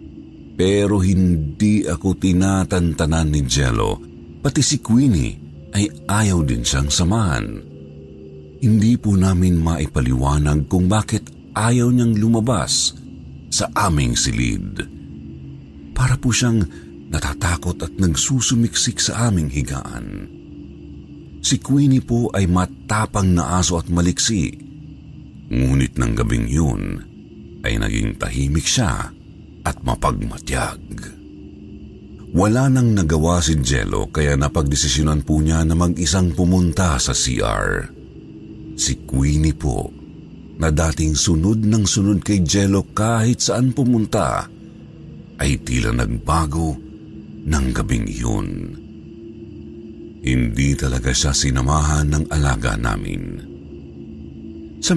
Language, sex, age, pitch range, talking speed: Filipino, male, 50-69, 70-105 Hz, 105 wpm